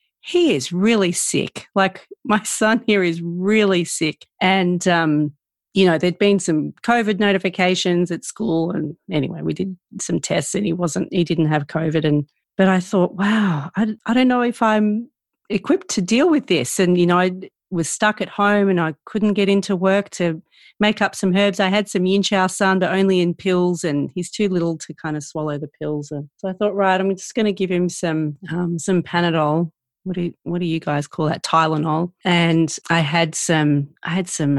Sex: female